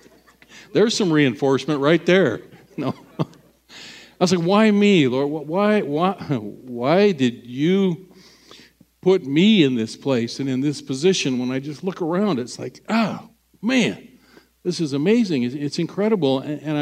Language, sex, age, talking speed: English, male, 50-69, 145 wpm